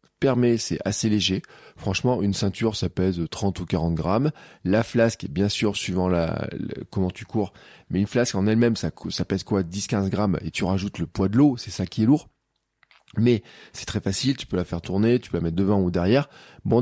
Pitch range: 90-120 Hz